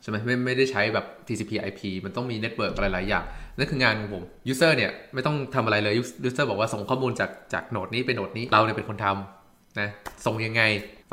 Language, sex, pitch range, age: Thai, male, 105-130 Hz, 20-39